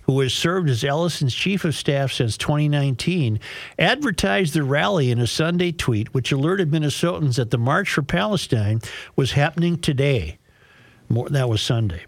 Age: 50-69